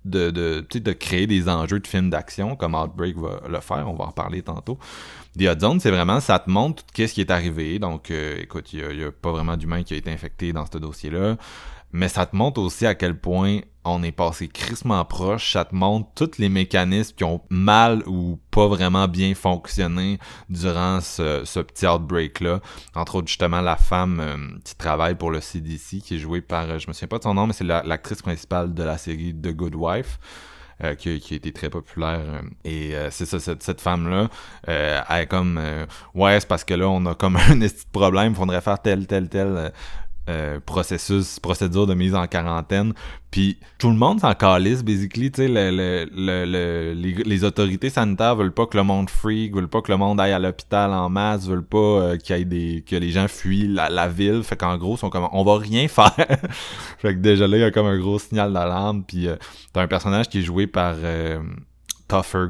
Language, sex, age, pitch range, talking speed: French, male, 30-49, 85-100 Hz, 230 wpm